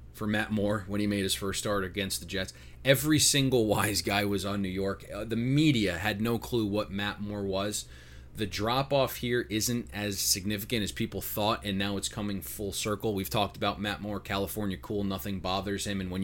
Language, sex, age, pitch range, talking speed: English, male, 30-49, 95-110 Hz, 210 wpm